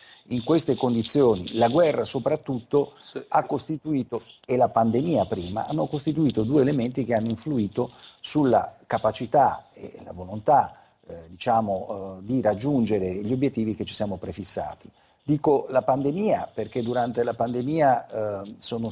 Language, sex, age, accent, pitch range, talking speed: Italian, male, 50-69, native, 105-135 Hz, 135 wpm